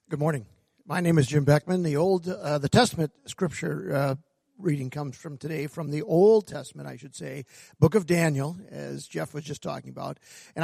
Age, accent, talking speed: 50-69, American, 195 wpm